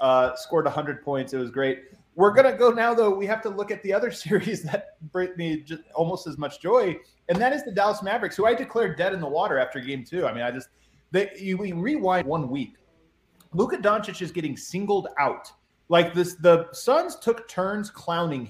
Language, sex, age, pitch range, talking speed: English, male, 30-49, 165-220 Hz, 215 wpm